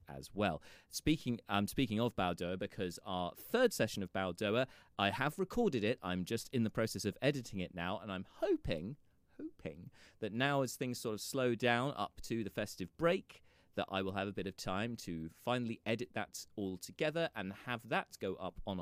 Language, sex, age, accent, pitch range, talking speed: English, male, 30-49, British, 90-115 Hz, 205 wpm